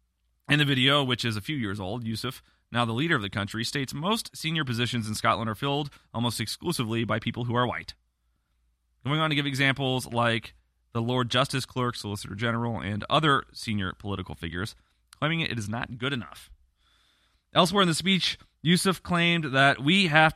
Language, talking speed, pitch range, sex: English, 185 wpm, 115-160 Hz, male